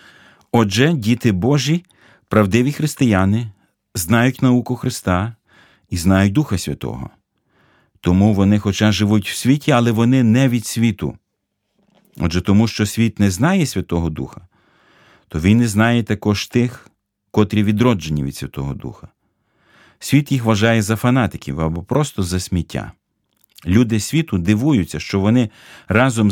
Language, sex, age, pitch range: Ukrainian, male, 40-59, 95-120 Hz